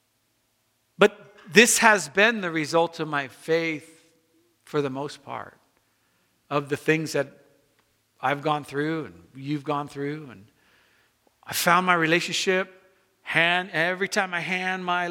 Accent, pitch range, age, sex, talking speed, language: American, 135-185 Hz, 50-69, male, 135 wpm, English